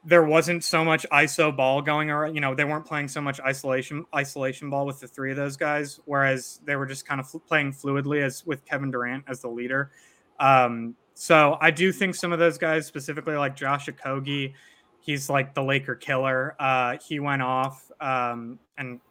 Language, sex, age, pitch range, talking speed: English, male, 20-39, 130-150 Hz, 200 wpm